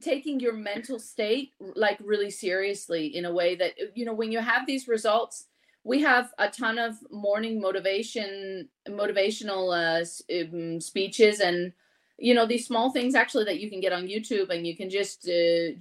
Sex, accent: female, American